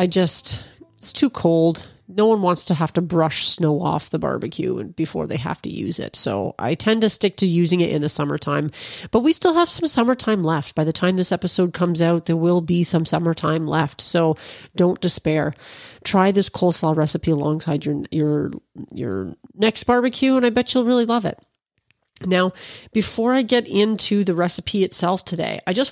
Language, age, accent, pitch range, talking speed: English, 30-49, American, 160-210 Hz, 190 wpm